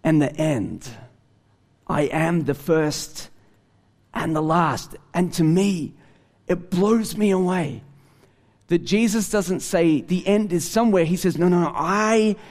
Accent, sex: Australian, male